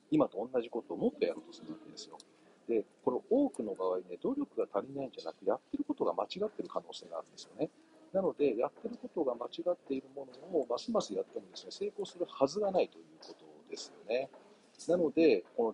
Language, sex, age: Japanese, male, 40-59